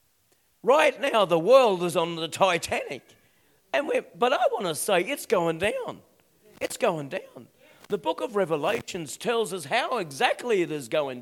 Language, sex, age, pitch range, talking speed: English, male, 50-69, 165-230 Hz, 170 wpm